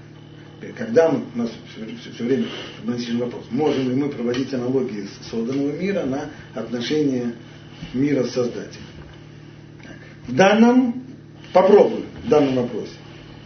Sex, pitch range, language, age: male, 135-170 Hz, Russian, 40-59